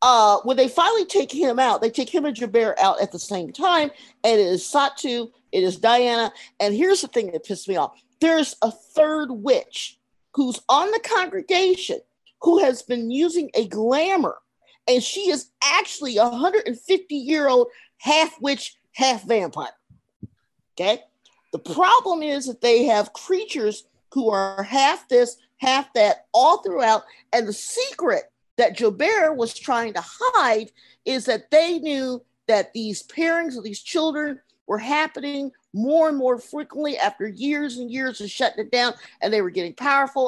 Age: 40-59